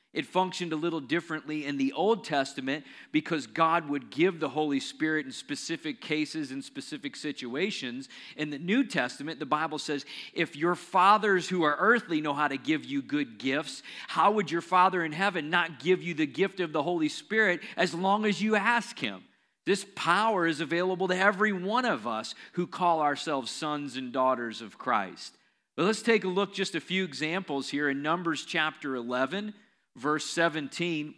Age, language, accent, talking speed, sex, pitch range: 40-59, English, American, 185 wpm, male, 145-185 Hz